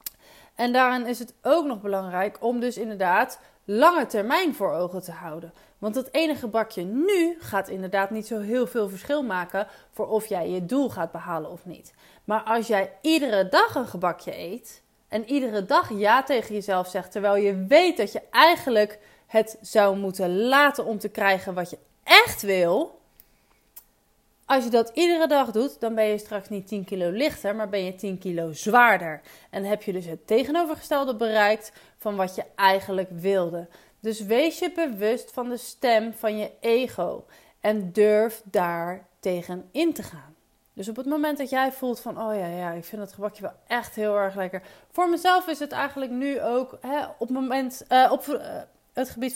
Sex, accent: female, Dutch